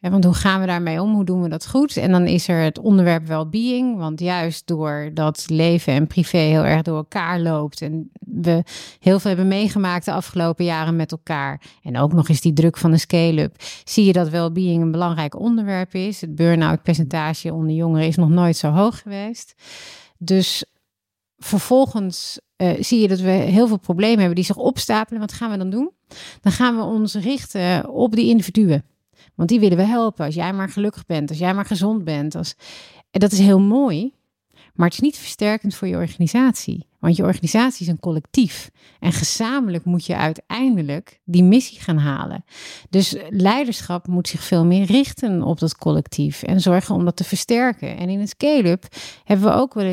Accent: Dutch